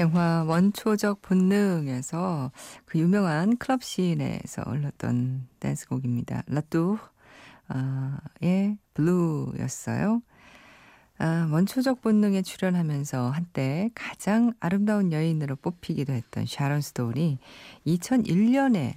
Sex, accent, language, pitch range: female, native, Korean, 140-195 Hz